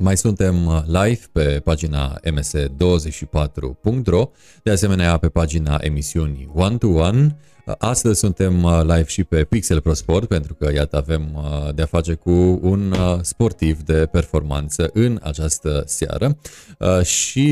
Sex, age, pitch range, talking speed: male, 30-49, 80-100 Hz, 130 wpm